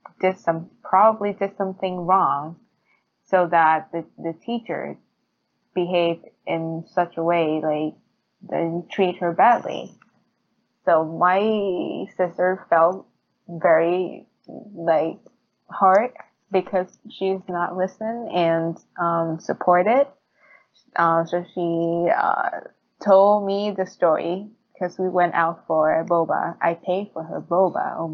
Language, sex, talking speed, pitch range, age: Vietnamese, female, 120 wpm, 165-195 Hz, 20-39